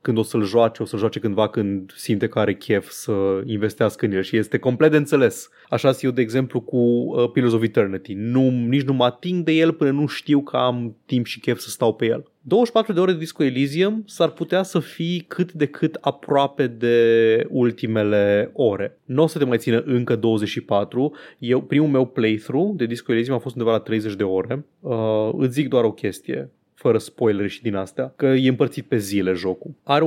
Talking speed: 210 wpm